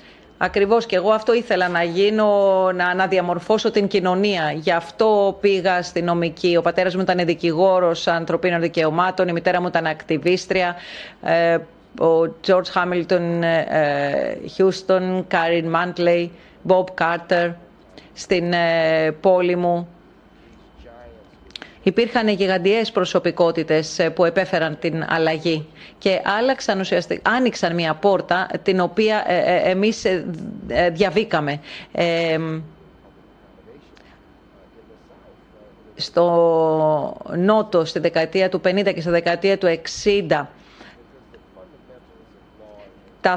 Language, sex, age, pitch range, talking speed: Greek, female, 30-49, 170-200 Hz, 95 wpm